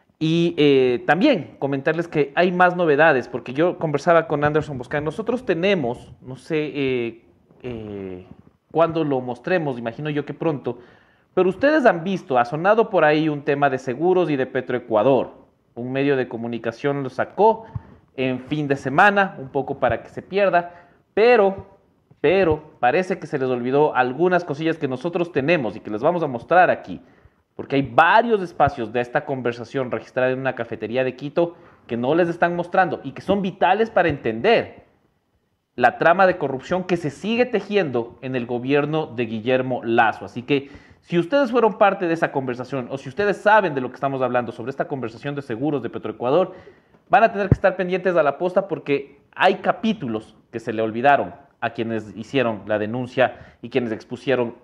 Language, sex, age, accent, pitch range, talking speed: English, male, 40-59, Mexican, 125-175 Hz, 180 wpm